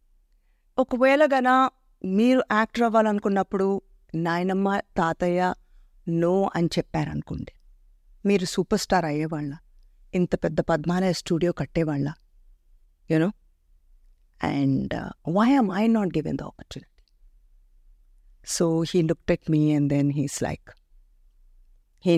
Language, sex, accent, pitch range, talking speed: Telugu, female, native, 145-205 Hz, 105 wpm